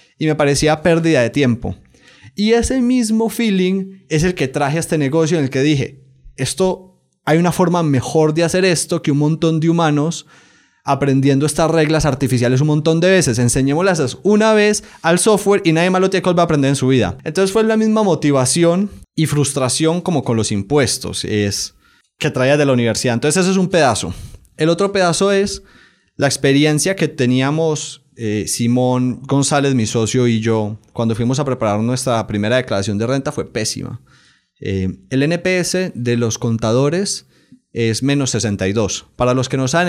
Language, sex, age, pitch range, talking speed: Spanish, male, 20-39, 120-165 Hz, 180 wpm